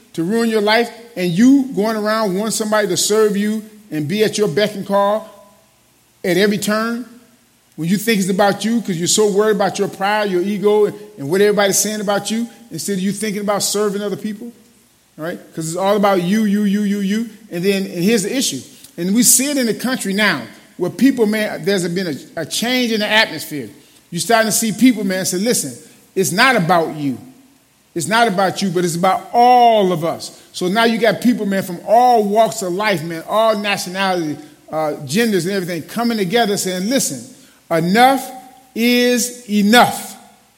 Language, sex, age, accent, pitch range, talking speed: English, male, 40-59, American, 190-230 Hz, 195 wpm